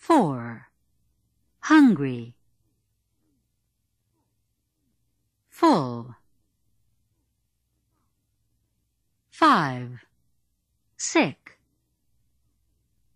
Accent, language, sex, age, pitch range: American, English, female, 50-69, 100-130 Hz